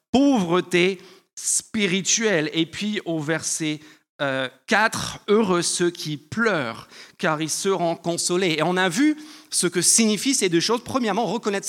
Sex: male